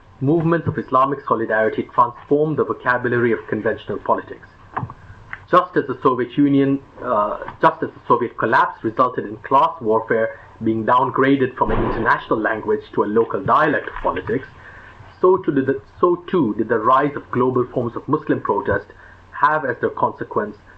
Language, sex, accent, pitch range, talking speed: English, male, Indian, 115-150 Hz, 160 wpm